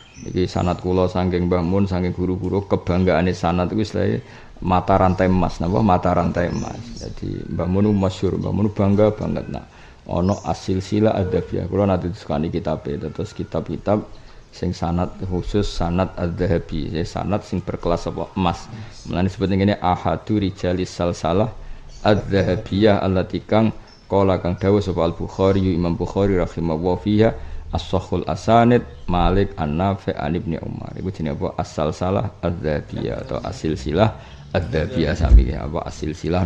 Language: Indonesian